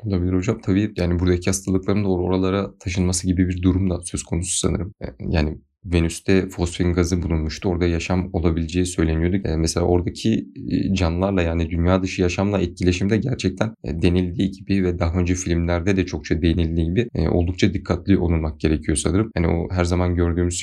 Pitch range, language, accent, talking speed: 85-100 Hz, Turkish, native, 155 wpm